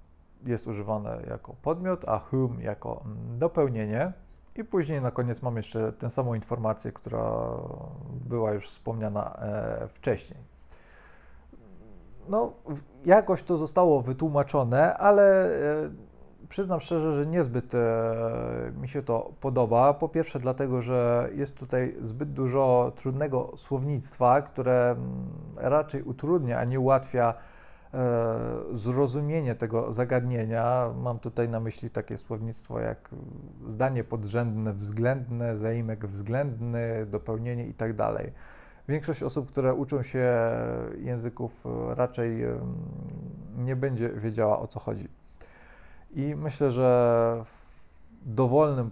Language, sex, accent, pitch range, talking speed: Polish, male, native, 110-135 Hz, 110 wpm